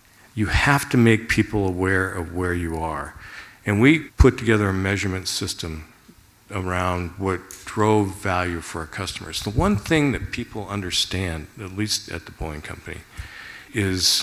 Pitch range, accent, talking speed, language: 95-115 Hz, American, 155 wpm, English